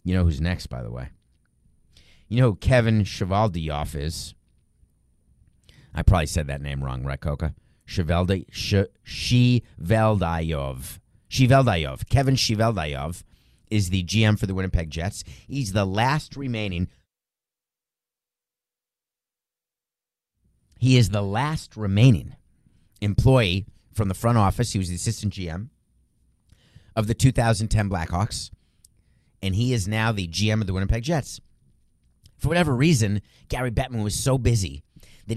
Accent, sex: American, male